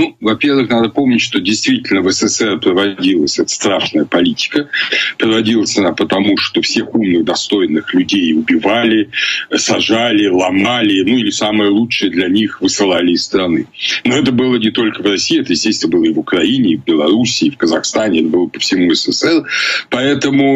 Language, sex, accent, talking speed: Ukrainian, male, native, 170 wpm